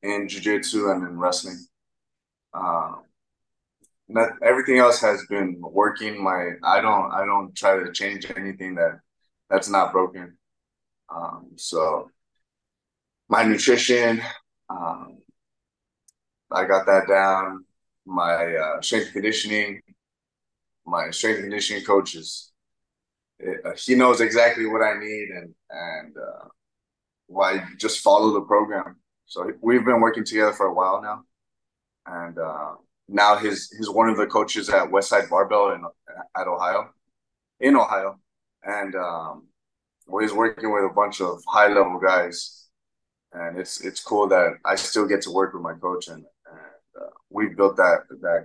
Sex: male